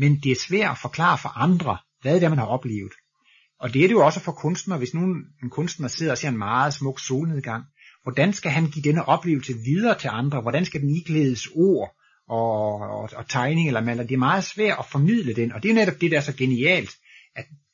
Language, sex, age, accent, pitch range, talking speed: Danish, male, 30-49, native, 120-170 Hz, 235 wpm